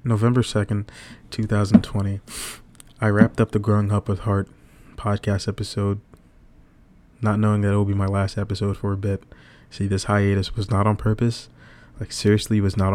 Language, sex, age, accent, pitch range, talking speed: English, male, 20-39, American, 100-105 Hz, 170 wpm